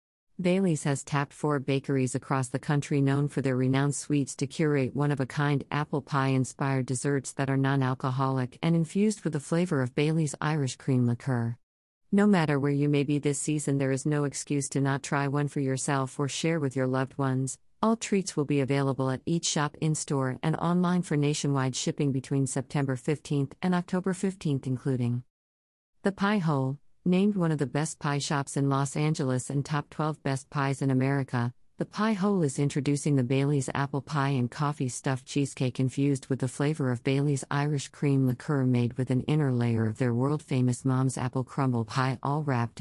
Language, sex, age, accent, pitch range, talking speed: English, female, 40-59, American, 130-150 Hz, 185 wpm